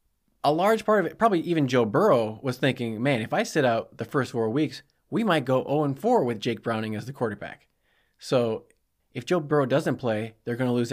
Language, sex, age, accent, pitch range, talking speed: English, male, 20-39, American, 115-170 Hz, 220 wpm